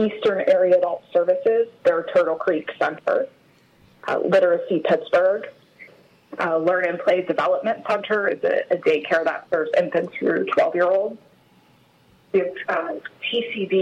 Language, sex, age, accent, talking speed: English, female, 30-49, American, 130 wpm